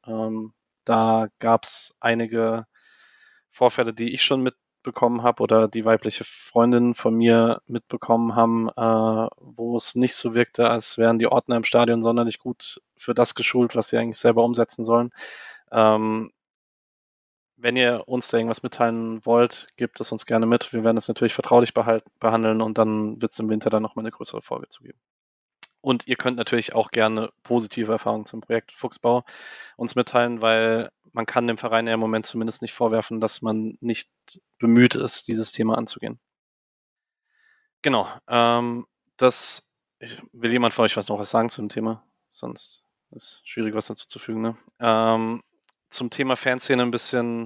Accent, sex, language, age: German, male, German, 20-39